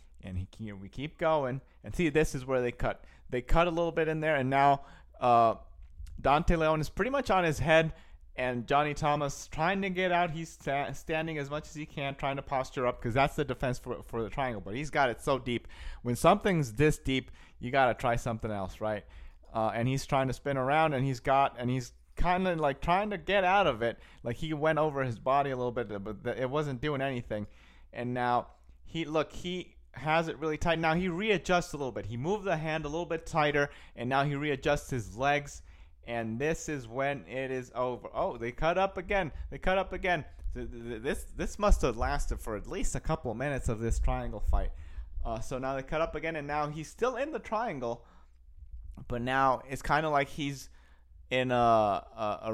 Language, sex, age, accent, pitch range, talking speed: English, male, 30-49, American, 115-155 Hz, 220 wpm